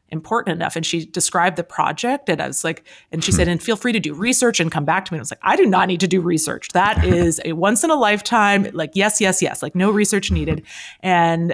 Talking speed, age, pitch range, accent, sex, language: 270 wpm, 30-49, 155-195 Hz, American, female, English